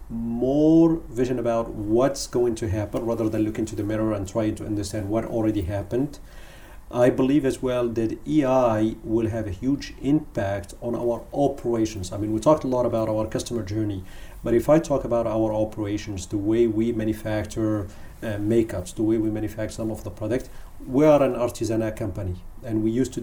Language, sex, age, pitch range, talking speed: English, male, 40-59, 110-125 Hz, 190 wpm